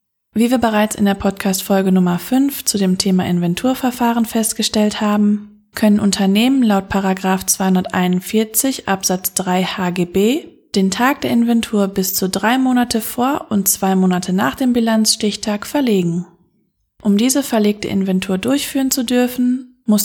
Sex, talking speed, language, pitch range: female, 135 wpm, German, 190-235 Hz